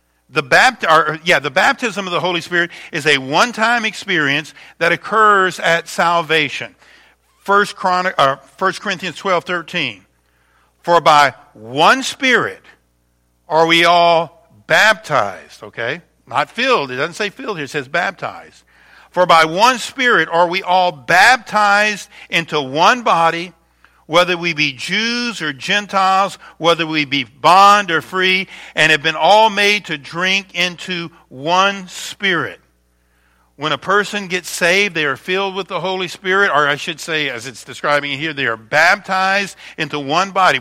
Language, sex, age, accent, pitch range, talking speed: English, male, 50-69, American, 150-195 Hz, 145 wpm